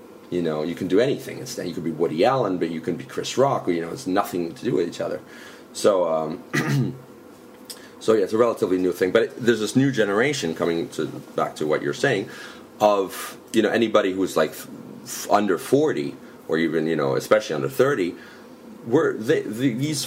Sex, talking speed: male, 210 wpm